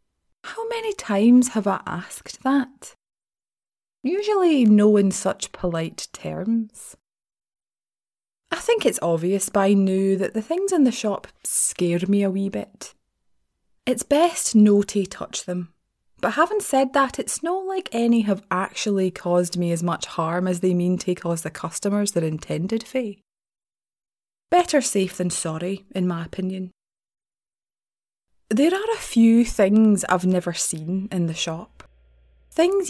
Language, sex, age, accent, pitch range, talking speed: English, female, 20-39, British, 170-230 Hz, 145 wpm